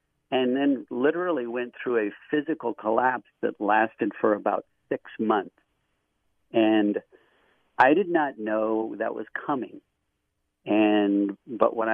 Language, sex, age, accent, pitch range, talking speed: English, male, 50-69, American, 105-125 Hz, 125 wpm